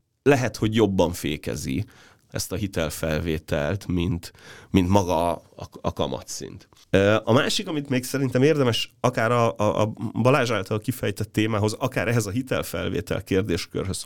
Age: 30-49